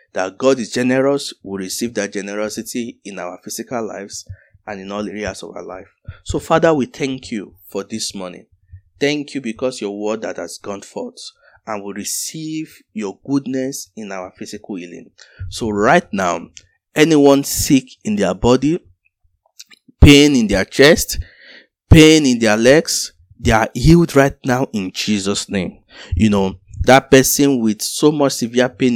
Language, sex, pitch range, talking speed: English, male, 105-140 Hz, 160 wpm